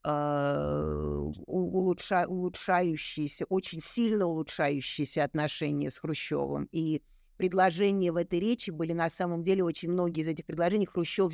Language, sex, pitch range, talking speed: Russian, female, 160-190 Hz, 115 wpm